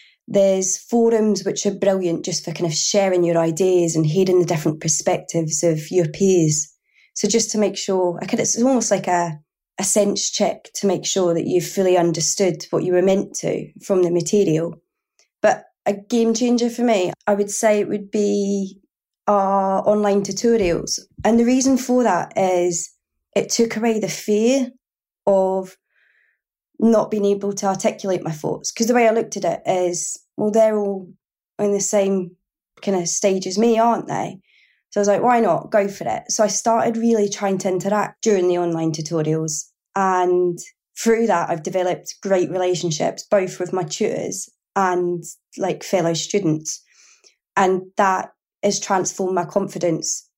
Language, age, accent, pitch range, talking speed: English, 20-39, British, 180-215 Hz, 175 wpm